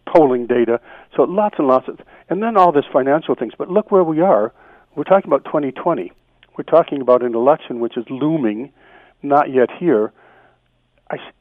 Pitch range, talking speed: 115-145 Hz, 180 wpm